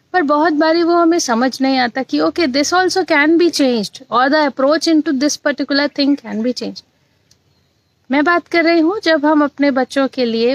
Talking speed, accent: 205 wpm, native